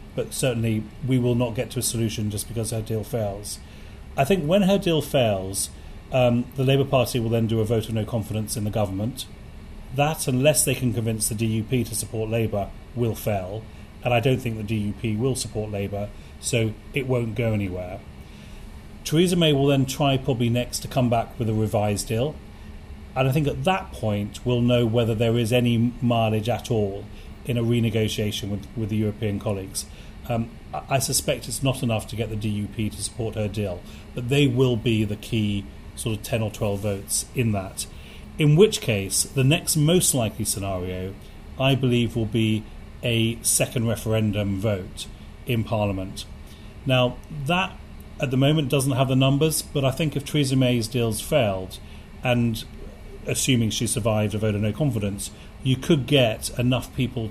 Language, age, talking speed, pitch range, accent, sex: English, 30-49, 185 wpm, 105-125 Hz, British, male